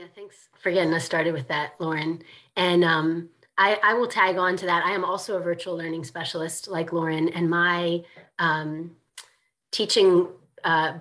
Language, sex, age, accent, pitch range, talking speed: English, female, 30-49, American, 155-185 Hz, 170 wpm